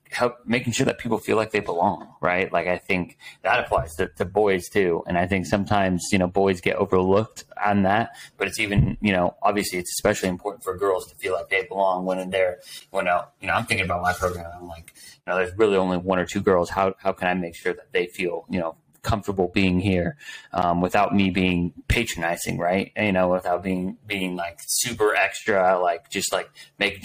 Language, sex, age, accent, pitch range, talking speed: English, male, 30-49, American, 90-105 Hz, 225 wpm